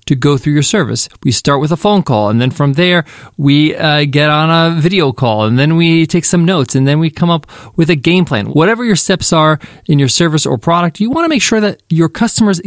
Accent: American